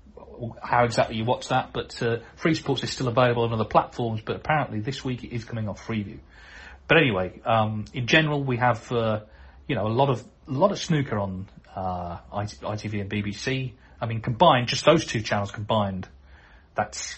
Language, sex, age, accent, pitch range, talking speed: English, male, 30-49, British, 105-130 Hz, 195 wpm